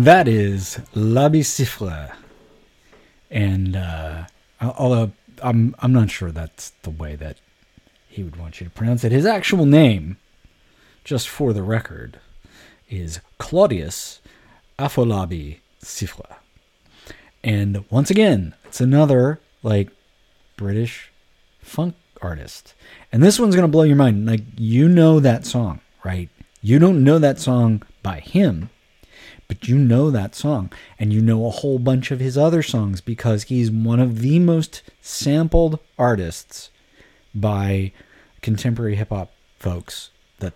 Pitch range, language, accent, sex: 95-130 Hz, English, American, male